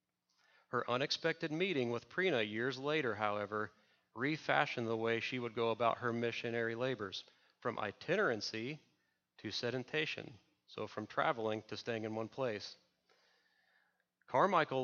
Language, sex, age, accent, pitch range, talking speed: English, male, 40-59, American, 110-135 Hz, 125 wpm